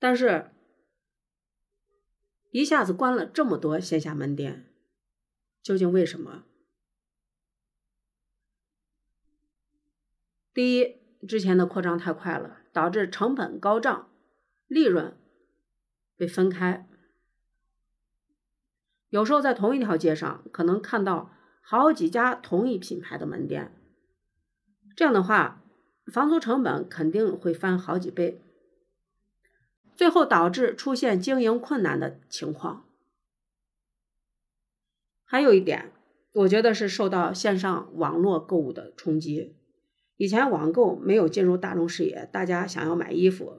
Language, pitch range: Chinese, 165-250 Hz